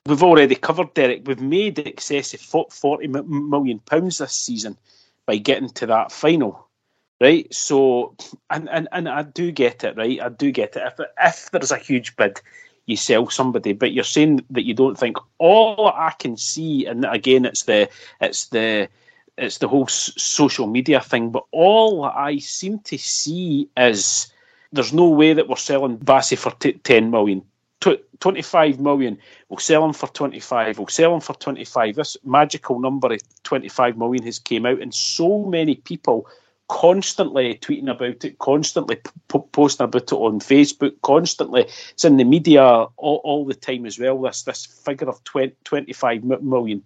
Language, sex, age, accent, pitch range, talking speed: English, male, 30-49, British, 125-160 Hz, 175 wpm